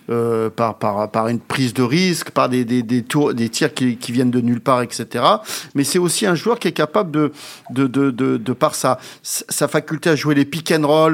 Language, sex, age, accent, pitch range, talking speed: French, male, 50-69, French, 135-175 Hz, 200 wpm